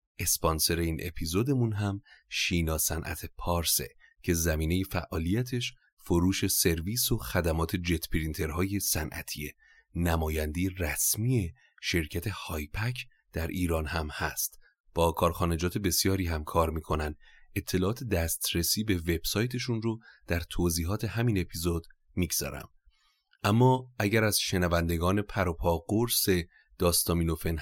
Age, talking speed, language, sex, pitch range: 30-49, 105 wpm, Persian, male, 85-105 Hz